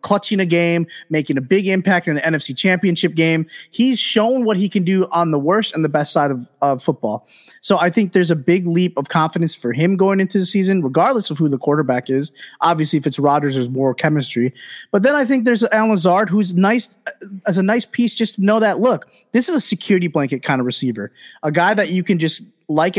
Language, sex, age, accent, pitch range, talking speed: English, male, 20-39, American, 145-190 Hz, 230 wpm